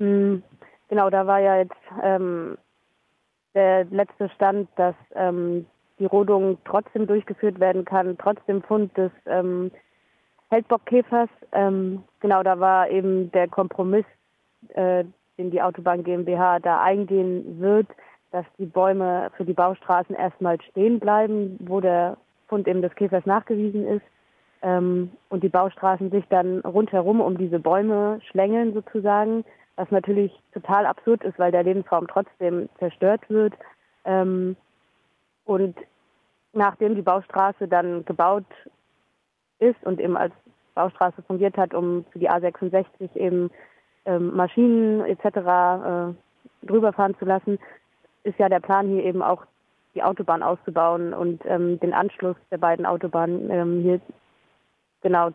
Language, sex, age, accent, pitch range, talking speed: German, female, 20-39, German, 180-200 Hz, 130 wpm